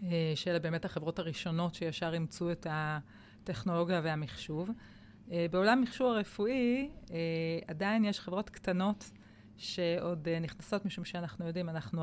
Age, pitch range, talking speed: 30-49, 165-200 Hz, 110 wpm